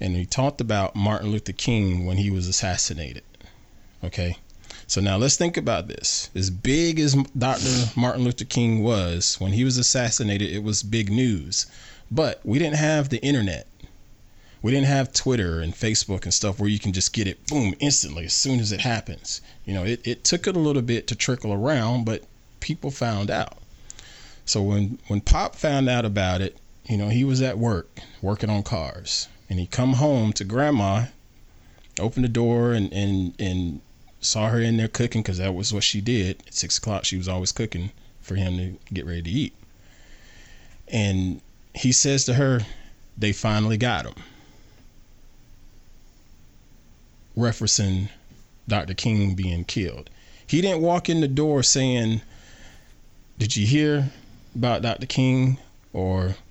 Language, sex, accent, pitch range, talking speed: English, male, American, 95-125 Hz, 170 wpm